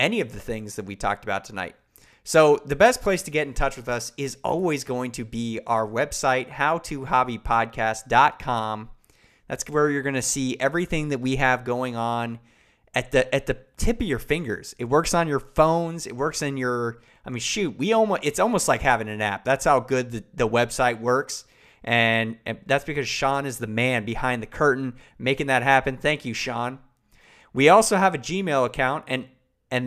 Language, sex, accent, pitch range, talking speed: English, male, American, 120-150 Hz, 200 wpm